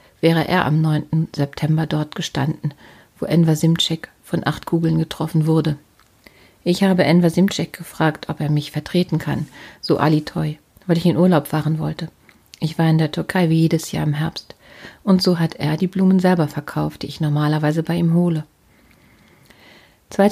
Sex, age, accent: female, 40-59, German